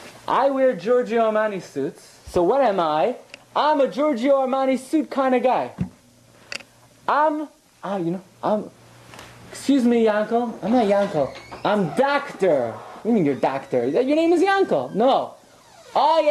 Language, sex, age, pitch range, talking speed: English, male, 30-49, 155-260 Hz, 155 wpm